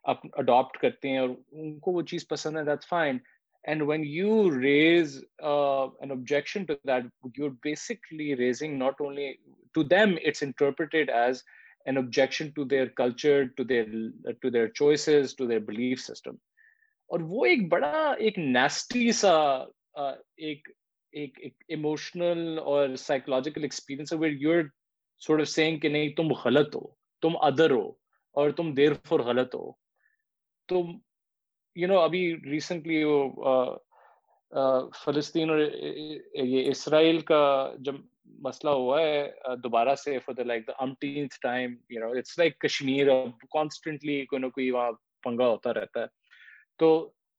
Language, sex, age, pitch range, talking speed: Urdu, male, 20-39, 135-165 Hz, 85 wpm